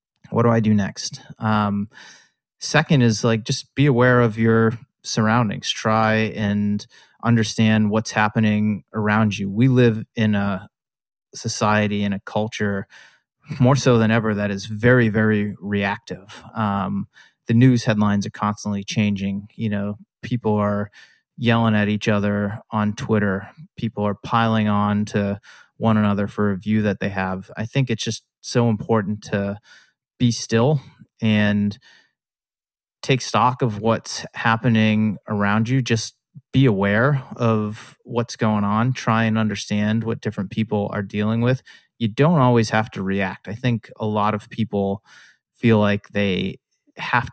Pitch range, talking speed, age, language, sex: 105-115 Hz, 150 wpm, 30-49, English, male